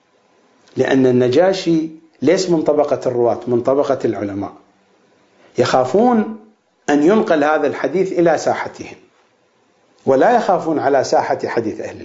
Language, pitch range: English, 165-240 Hz